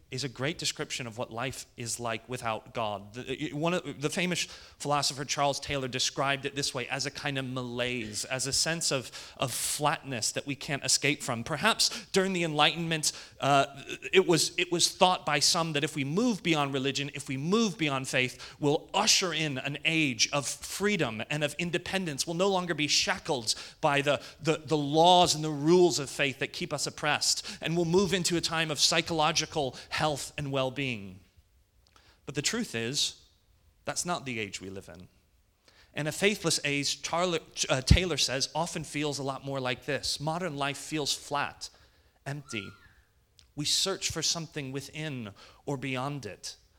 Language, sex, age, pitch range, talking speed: English, male, 30-49, 125-155 Hz, 180 wpm